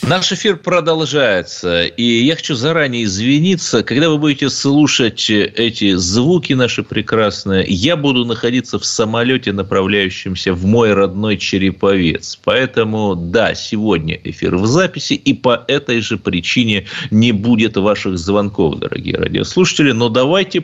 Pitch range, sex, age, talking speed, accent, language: 100-145 Hz, male, 30-49, 130 wpm, native, Russian